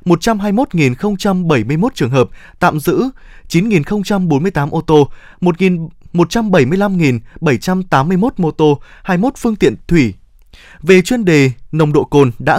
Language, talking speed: Vietnamese, 110 wpm